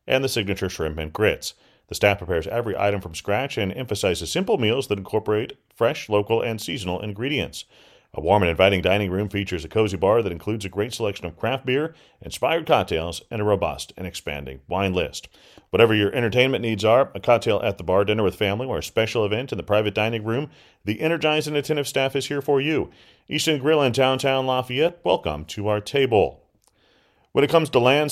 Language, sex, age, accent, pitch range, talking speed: English, male, 40-59, American, 95-130 Hz, 205 wpm